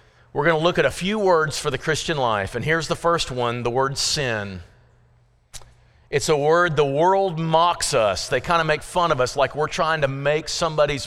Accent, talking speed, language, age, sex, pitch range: American, 215 wpm, English, 40-59, male, 120-165 Hz